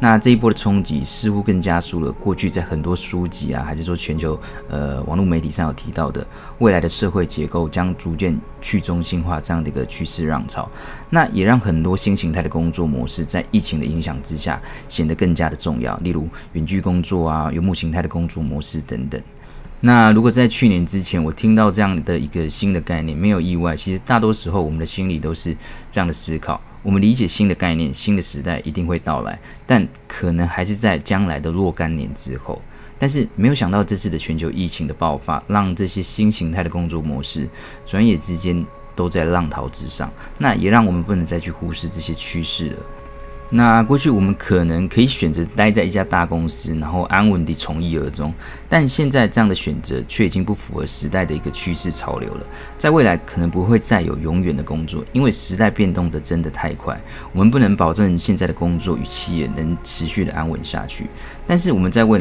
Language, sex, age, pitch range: Chinese, male, 20-39, 80-100 Hz